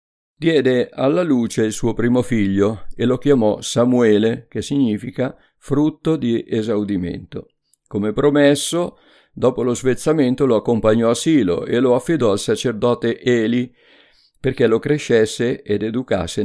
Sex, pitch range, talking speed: male, 105-135 Hz, 130 wpm